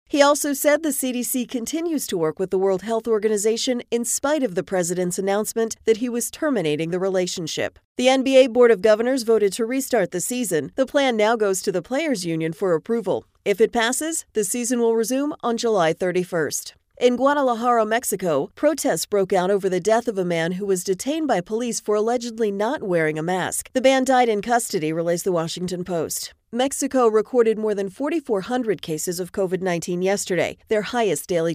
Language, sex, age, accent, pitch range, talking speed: English, female, 40-59, American, 185-250 Hz, 190 wpm